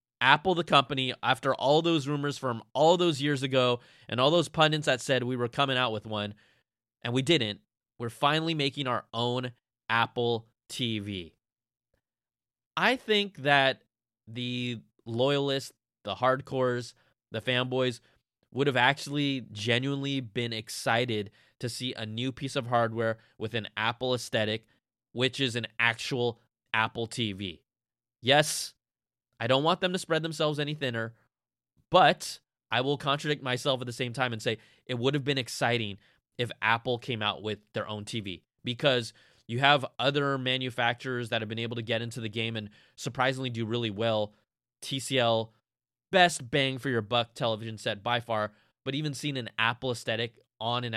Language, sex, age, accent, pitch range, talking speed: English, male, 20-39, American, 115-140 Hz, 160 wpm